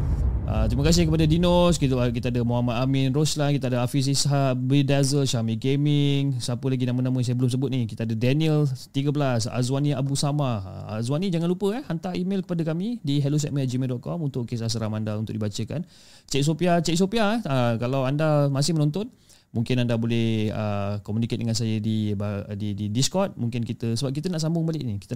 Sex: male